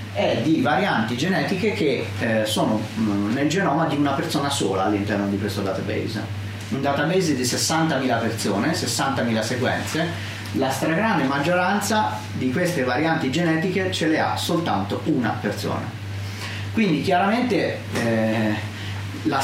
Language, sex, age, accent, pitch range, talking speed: Italian, male, 30-49, native, 105-140 Hz, 125 wpm